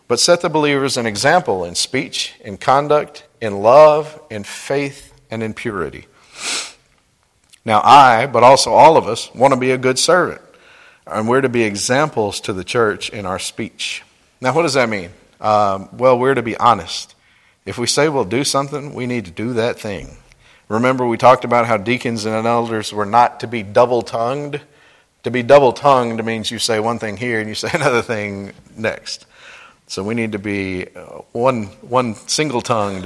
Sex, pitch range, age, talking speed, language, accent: male, 105-125 Hz, 50-69, 180 wpm, English, American